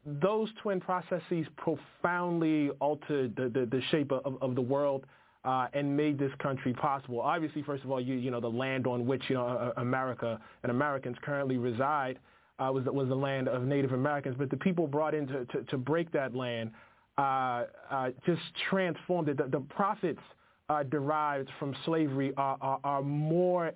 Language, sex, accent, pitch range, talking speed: English, male, American, 135-165 Hz, 180 wpm